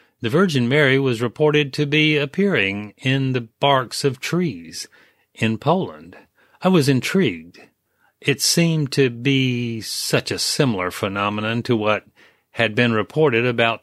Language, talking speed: English, 140 wpm